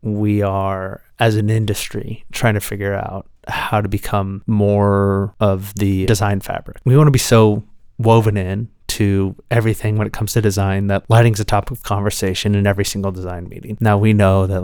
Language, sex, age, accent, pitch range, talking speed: English, male, 30-49, American, 100-115 Hz, 190 wpm